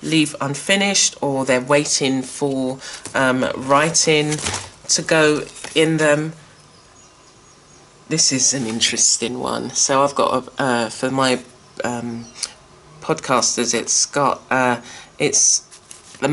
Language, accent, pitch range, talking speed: English, British, 125-160 Hz, 115 wpm